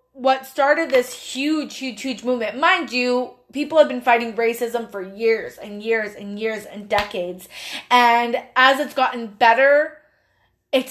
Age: 20-39